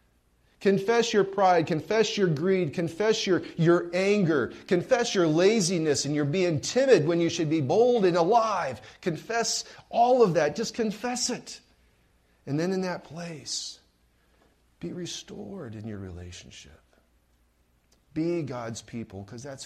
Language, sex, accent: English, male, American